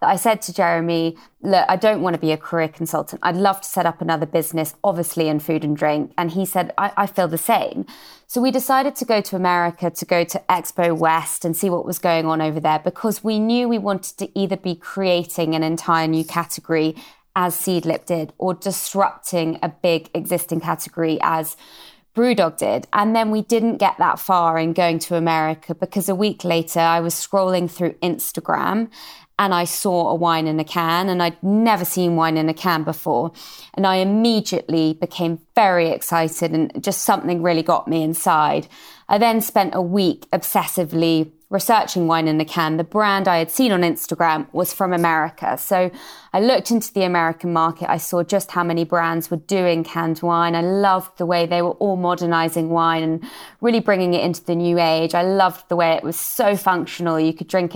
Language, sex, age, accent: English, female, 20-39, British